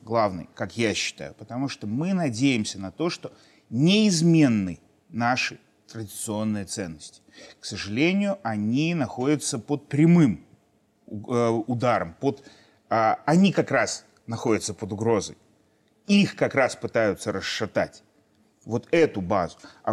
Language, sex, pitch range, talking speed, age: Russian, male, 110-155 Hz, 110 wpm, 30-49